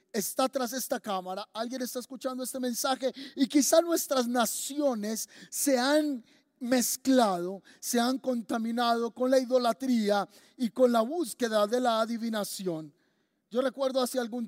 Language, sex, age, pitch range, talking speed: Spanish, male, 30-49, 225-265 Hz, 135 wpm